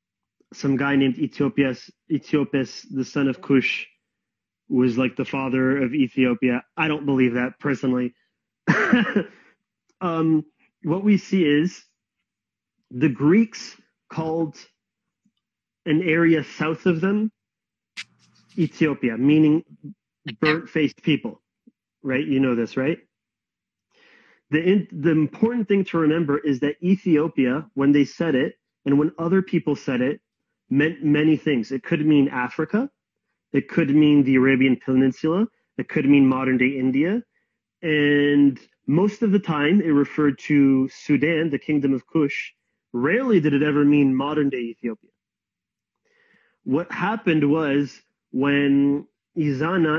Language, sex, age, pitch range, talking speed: English, male, 30-49, 135-160 Hz, 125 wpm